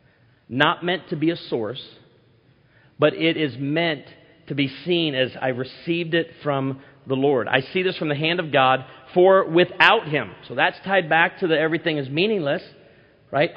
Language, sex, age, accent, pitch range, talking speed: English, male, 40-59, American, 130-165 Hz, 180 wpm